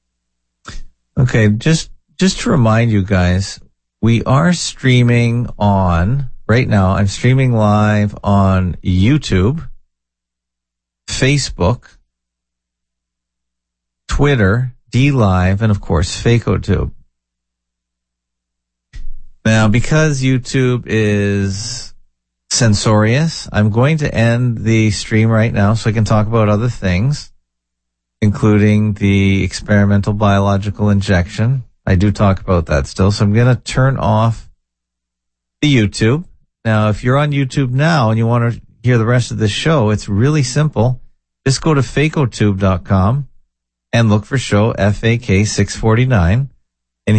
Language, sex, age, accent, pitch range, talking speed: English, male, 50-69, American, 75-120 Hz, 120 wpm